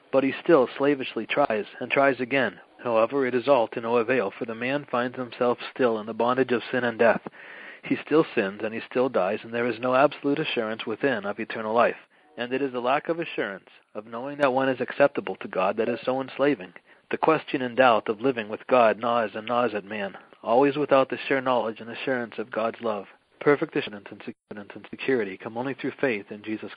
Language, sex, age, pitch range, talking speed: English, male, 40-59, 110-130 Hz, 215 wpm